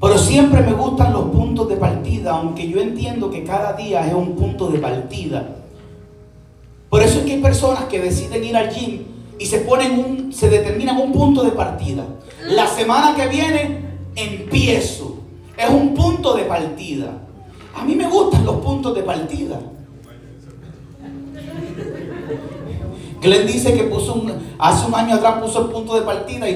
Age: 40-59